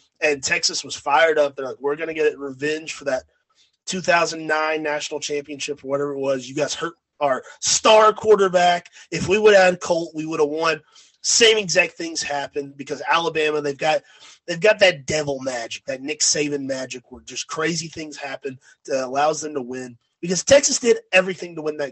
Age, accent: 30-49, American